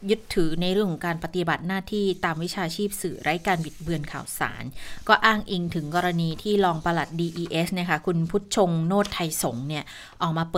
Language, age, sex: Thai, 20-39, female